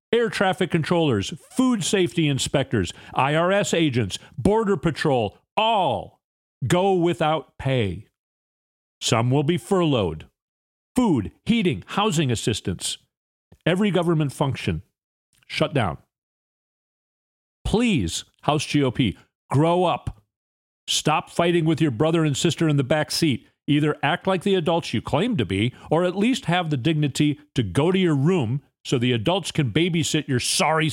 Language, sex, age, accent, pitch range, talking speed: English, male, 40-59, American, 115-165 Hz, 135 wpm